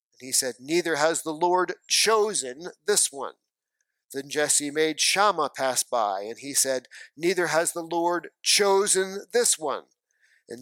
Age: 40-59